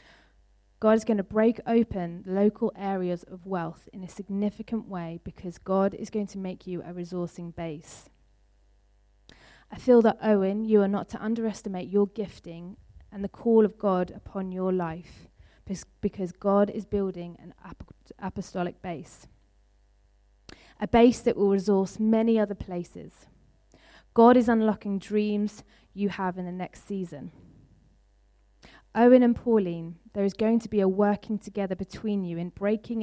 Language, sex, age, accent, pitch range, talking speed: English, female, 20-39, British, 175-210 Hz, 150 wpm